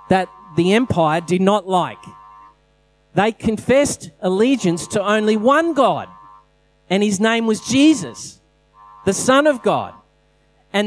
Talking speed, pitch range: 125 wpm, 140-195 Hz